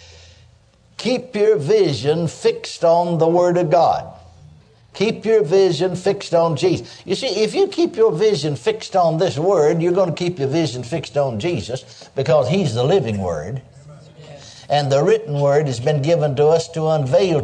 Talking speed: 175 wpm